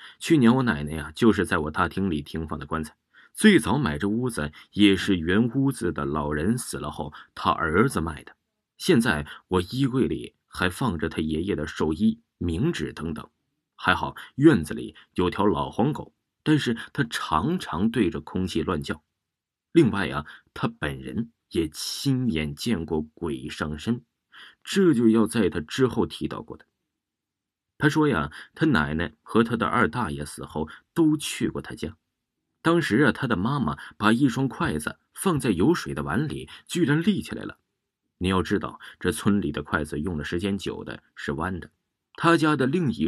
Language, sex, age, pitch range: Chinese, male, 20-39, 75-120 Hz